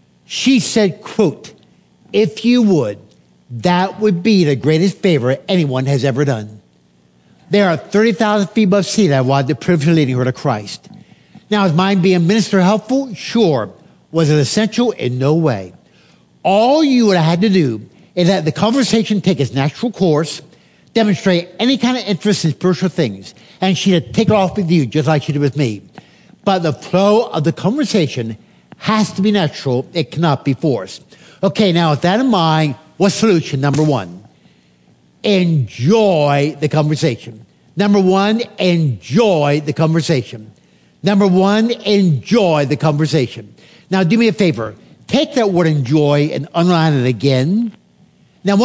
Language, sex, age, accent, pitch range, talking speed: English, male, 60-79, American, 140-205 Hz, 160 wpm